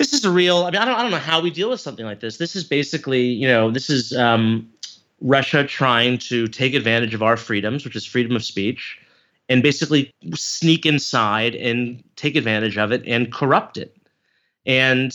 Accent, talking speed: American, 205 wpm